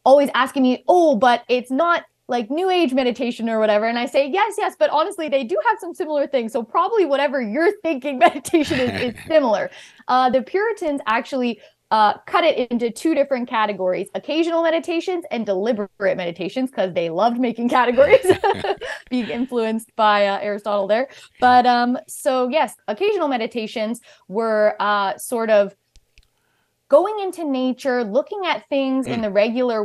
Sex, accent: female, American